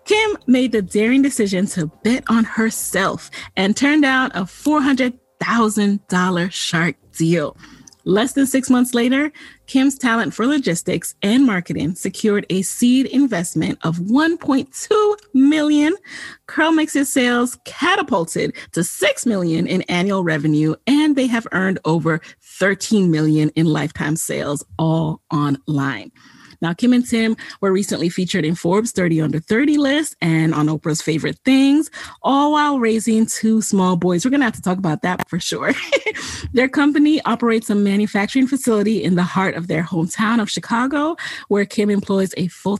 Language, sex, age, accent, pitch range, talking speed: English, female, 30-49, American, 175-255 Hz, 150 wpm